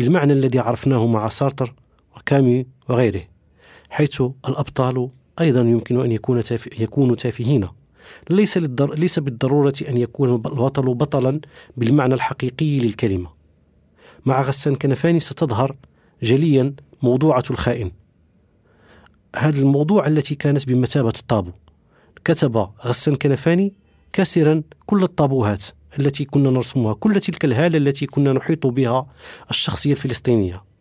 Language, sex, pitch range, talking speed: Arabic, male, 115-150 Hz, 105 wpm